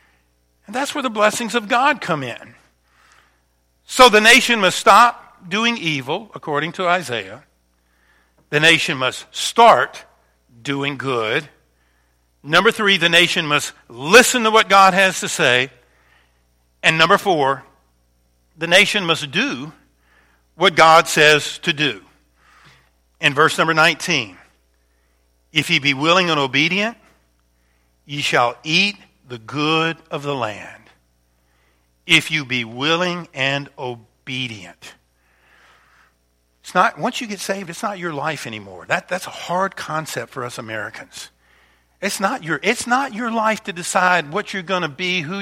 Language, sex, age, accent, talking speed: English, male, 50-69, American, 135 wpm